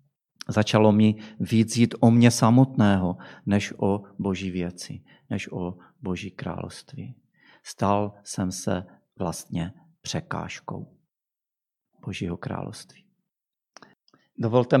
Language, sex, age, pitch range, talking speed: Czech, male, 40-59, 95-115 Hz, 95 wpm